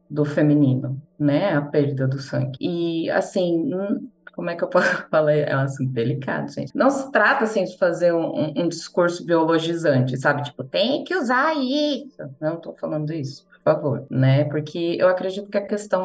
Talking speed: 190 wpm